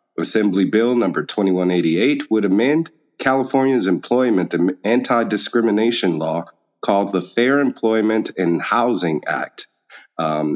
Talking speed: 110 wpm